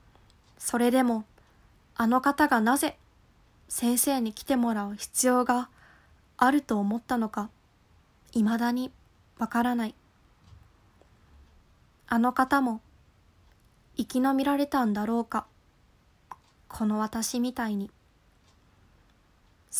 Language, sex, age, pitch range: Japanese, female, 20-39, 210-255 Hz